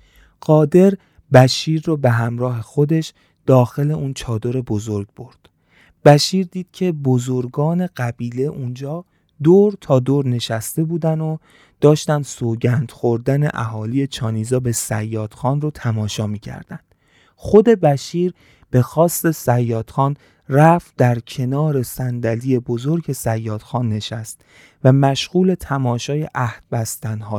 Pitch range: 115-150 Hz